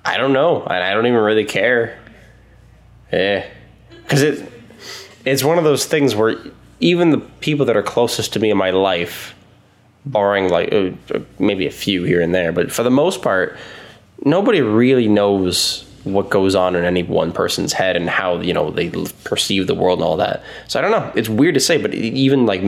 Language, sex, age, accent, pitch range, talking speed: English, male, 10-29, American, 90-110 Hz, 195 wpm